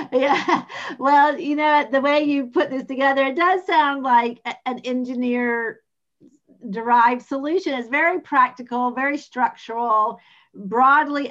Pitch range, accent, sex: 205-270 Hz, American, female